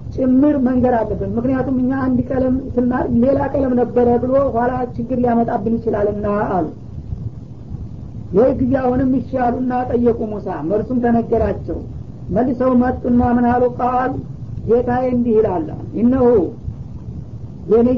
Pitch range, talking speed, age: 230-255 Hz, 110 wpm, 50-69